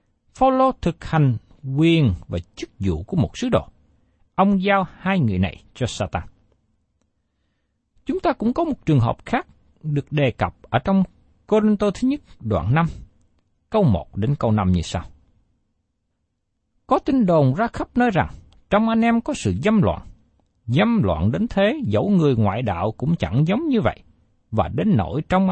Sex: male